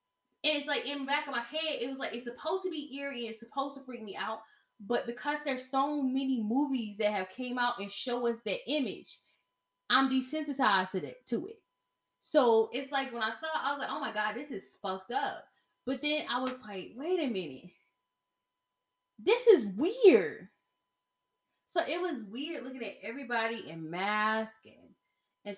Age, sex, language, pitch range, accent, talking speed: 10-29, female, English, 190-265 Hz, American, 190 wpm